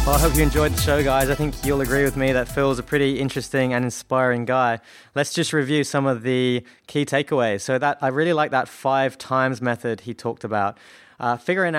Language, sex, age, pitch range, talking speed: English, male, 20-39, 120-145 Hz, 225 wpm